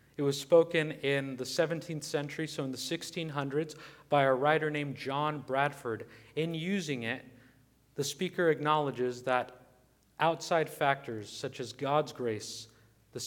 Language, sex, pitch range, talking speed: English, male, 125-150 Hz, 140 wpm